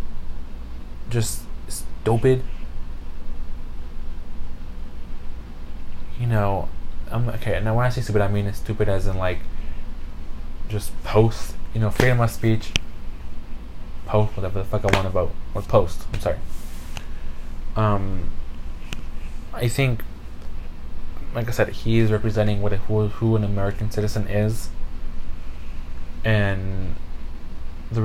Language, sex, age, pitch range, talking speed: English, male, 20-39, 75-105 Hz, 120 wpm